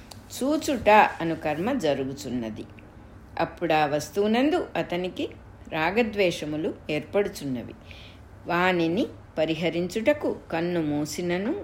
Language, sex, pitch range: English, female, 145-220 Hz